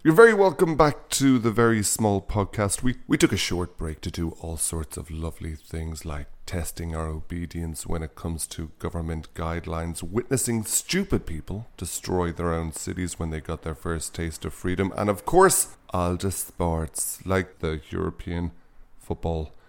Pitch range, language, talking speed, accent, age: 85-110 Hz, English, 175 wpm, Irish, 30-49